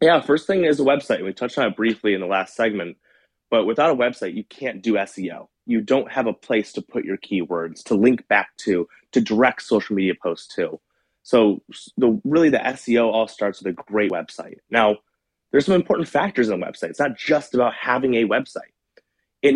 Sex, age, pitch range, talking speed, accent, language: male, 30-49, 100-135 Hz, 205 wpm, American, English